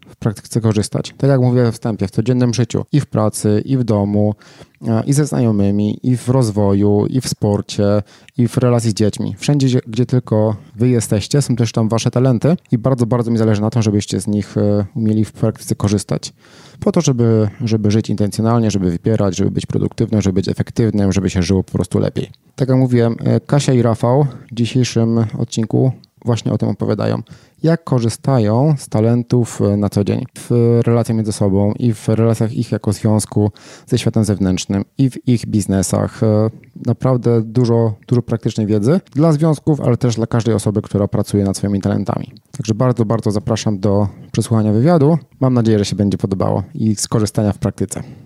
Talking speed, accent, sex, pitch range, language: 180 wpm, native, male, 105-125 Hz, Polish